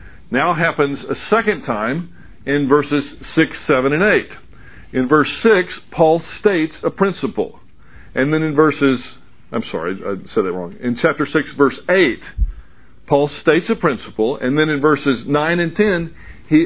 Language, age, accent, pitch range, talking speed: English, 50-69, American, 130-175 Hz, 160 wpm